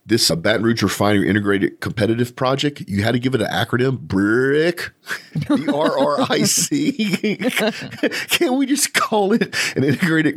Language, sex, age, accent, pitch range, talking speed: English, male, 40-59, American, 95-125 Hz, 175 wpm